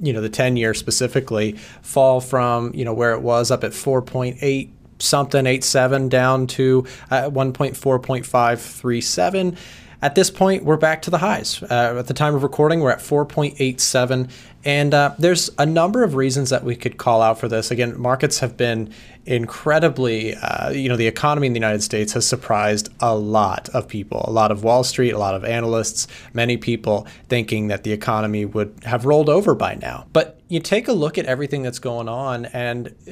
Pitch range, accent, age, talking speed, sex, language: 115-145 Hz, American, 30-49, 190 wpm, male, English